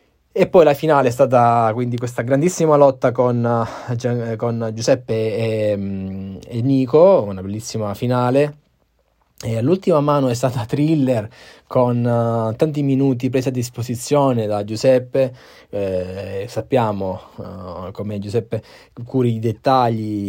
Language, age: Italian, 20-39